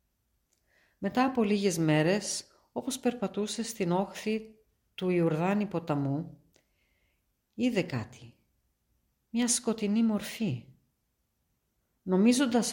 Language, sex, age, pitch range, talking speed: Greek, female, 50-69, 140-210 Hz, 80 wpm